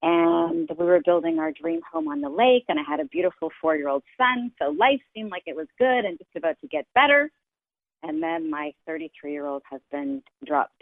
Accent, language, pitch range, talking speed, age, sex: American, English, 145-200 Hz, 200 wpm, 40-59, female